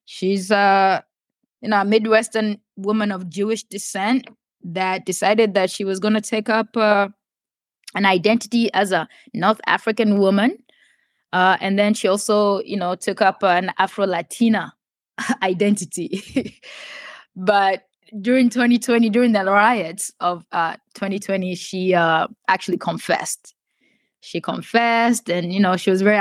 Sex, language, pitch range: female, English, 190-230 Hz